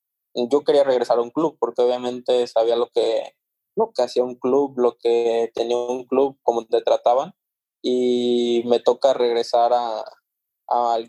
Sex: male